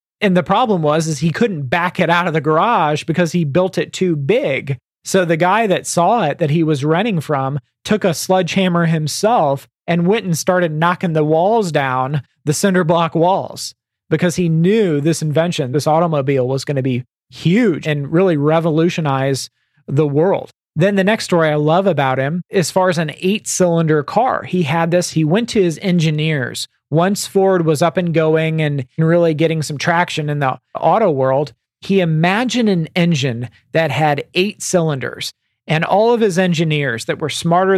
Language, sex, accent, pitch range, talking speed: English, male, American, 150-180 Hz, 185 wpm